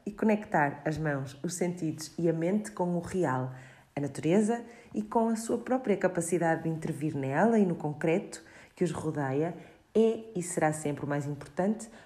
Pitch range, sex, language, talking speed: 155-195 Hz, female, Portuguese, 180 wpm